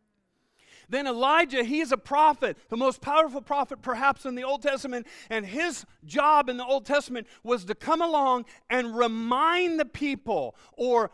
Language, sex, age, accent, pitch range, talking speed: English, male, 40-59, American, 220-300 Hz, 165 wpm